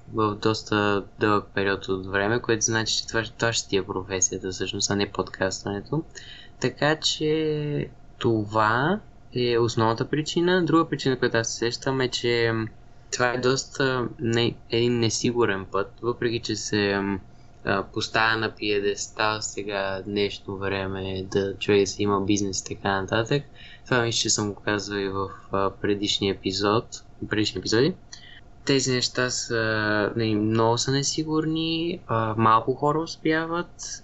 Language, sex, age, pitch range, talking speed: Bulgarian, male, 20-39, 105-120 Hz, 140 wpm